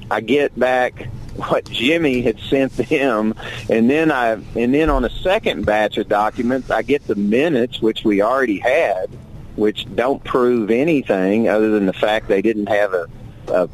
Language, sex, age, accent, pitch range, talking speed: English, male, 40-59, American, 115-155 Hz, 180 wpm